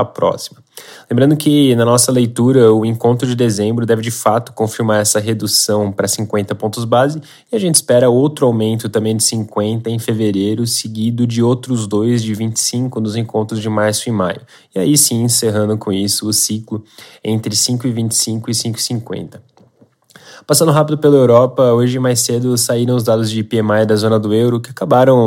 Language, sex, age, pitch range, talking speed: Portuguese, male, 20-39, 110-120 Hz, 175 wpm